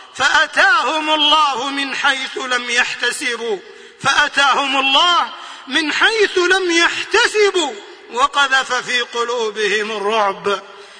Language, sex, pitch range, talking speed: Arabic, male, 275-390 Hz, 85 wpm